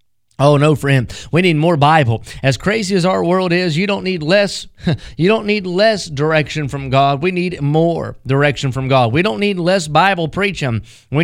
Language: English